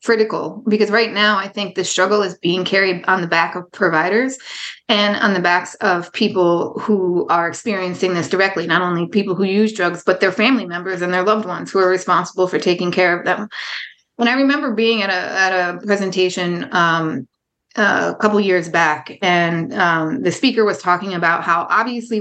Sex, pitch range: female, 175-210 Hz